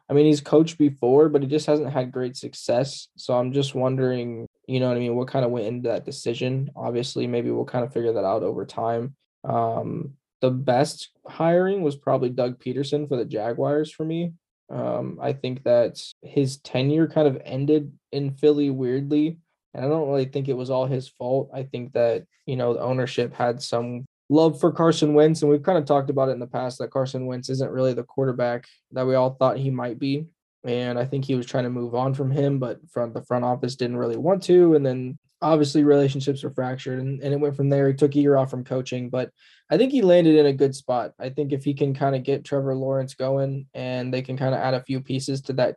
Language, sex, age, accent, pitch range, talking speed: English, male, 10-29, American, 125-145 Hz, 235 wpm